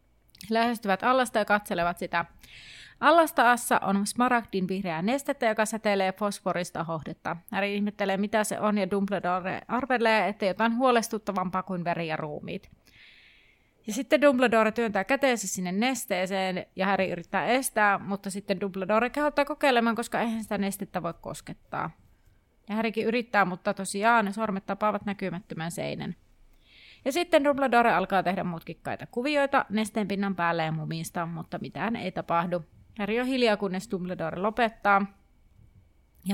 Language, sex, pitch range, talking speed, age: Finnish, female, 175-230 Hz, 135 wpm, 30-49